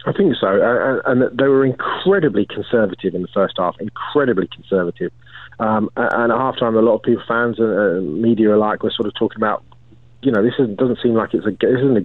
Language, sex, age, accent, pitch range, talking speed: English, male, 30-49, British, 105-120 Hz, 220 wpm